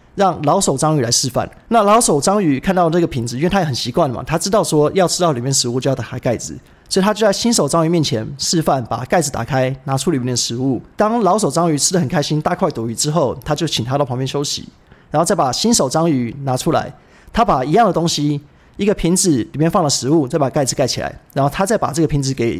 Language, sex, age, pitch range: Chinese, male, 30-49, 130-180 Hz